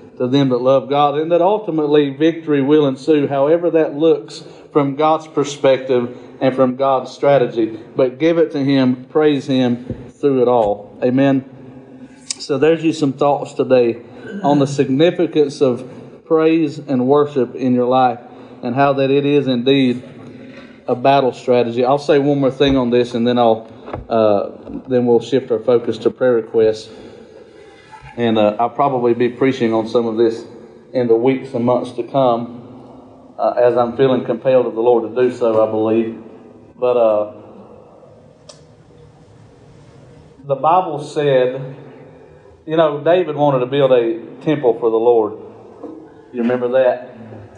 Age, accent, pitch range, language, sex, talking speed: 50-69, American, 120-145 Hz, English, male, 160 wpm